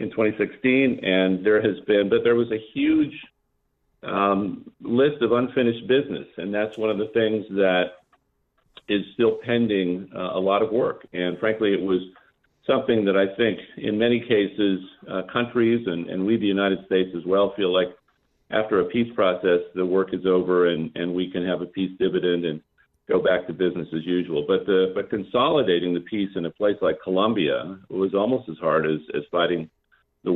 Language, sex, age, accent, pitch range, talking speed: English, male, 50-69, American, 90-105 Hz, 190 wpm